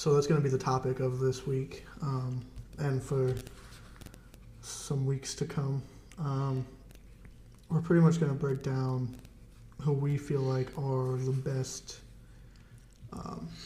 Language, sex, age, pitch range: English, male, 20-39, 125-145 Hz